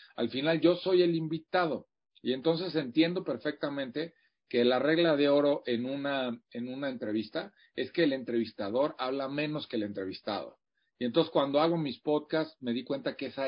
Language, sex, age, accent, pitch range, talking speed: Spanish, male, 40-59, Mexican, 120-165 Hz, 175 wpm